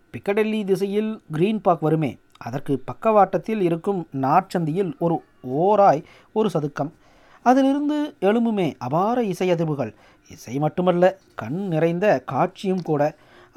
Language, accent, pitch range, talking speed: Tamil, native, 160-220 Hz, 100 wpm